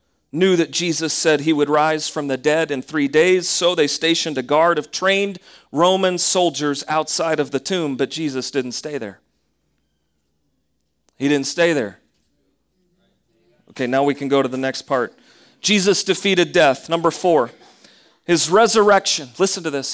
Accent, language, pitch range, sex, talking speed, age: American, English, 145-185 Hz, male, 165 wpm, 40-59